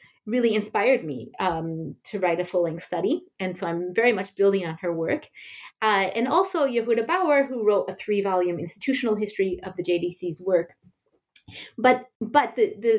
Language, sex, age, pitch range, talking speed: English, female, 30-49, 185-250 Hz, 170 wpm